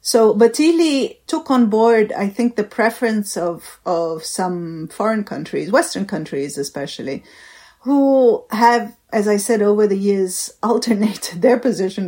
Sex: female